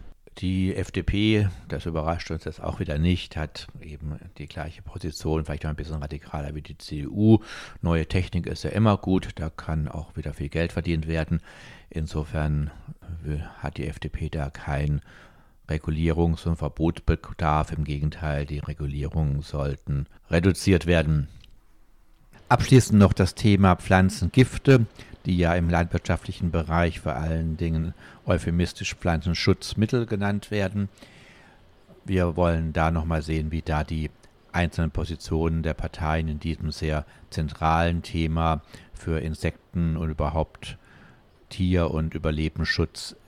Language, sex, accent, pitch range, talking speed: German, male, German, 80-95 Hz, 130 wpm